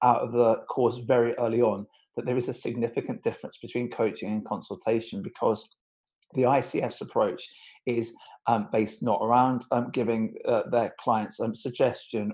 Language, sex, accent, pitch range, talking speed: English, male, British, 110-125 Hz, 160 wpm